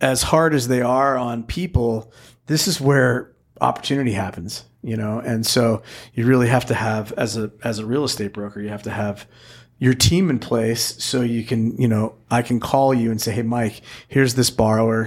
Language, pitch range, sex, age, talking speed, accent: English, 110-130 Hz, male, 40-59, 205 wpm, American